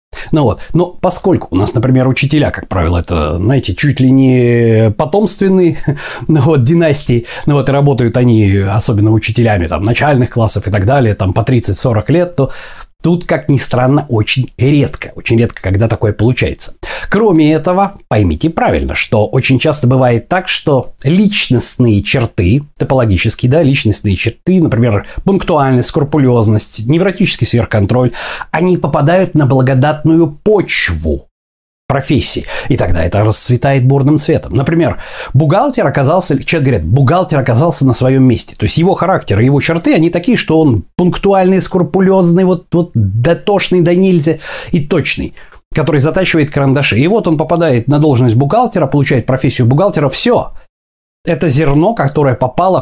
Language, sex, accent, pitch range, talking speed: Russian, male, native, 115-165 Hz, 145 wpm